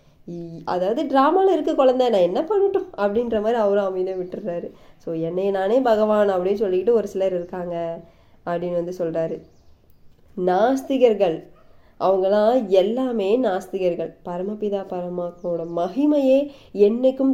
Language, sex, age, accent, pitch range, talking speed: Tamil, female, 20-39, native, 180-235 Hz, 110 wpm